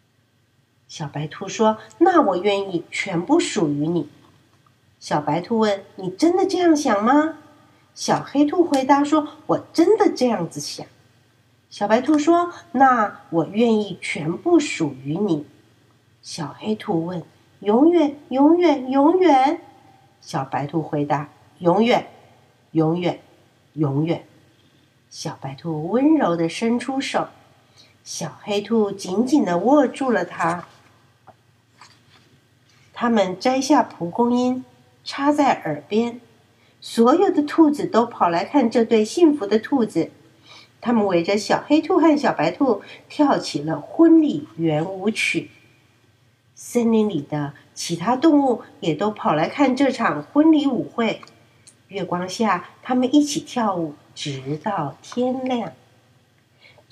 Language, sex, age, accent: Chinese, female, 50-69, native